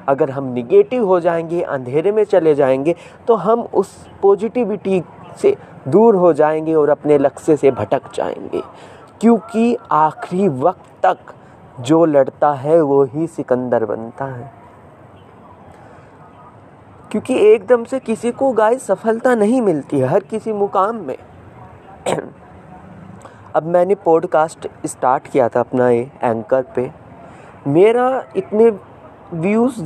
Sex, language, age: male, Hindi, 20-39